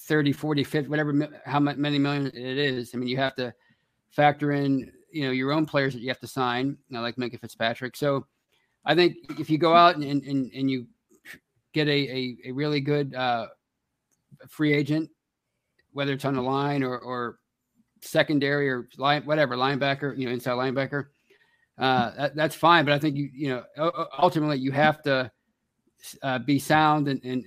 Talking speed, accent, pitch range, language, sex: 185 wpm, American, 125-150 Hz, English, male